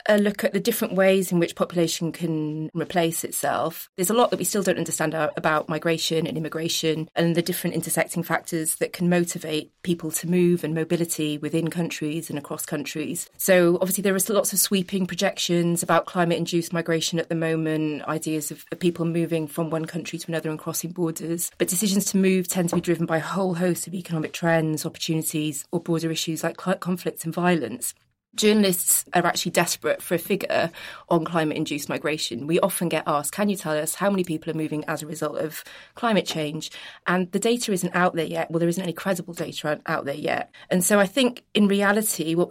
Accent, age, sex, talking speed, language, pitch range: British, 30-49, female, 200 wpm, English, 160-180 Hz